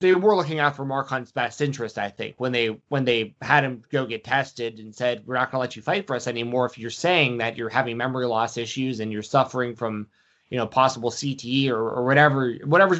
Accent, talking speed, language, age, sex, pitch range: American, 240 wpm, English, 20-39, male, 120-150 Hz